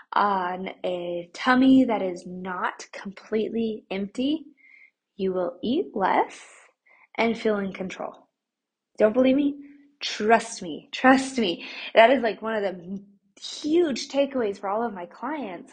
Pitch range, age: 190-250 Hz, 20-39